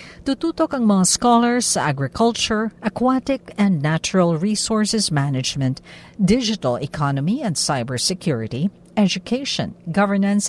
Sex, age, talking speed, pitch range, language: female, 50-69, 95 wpm, 160-225 Hz, Filipino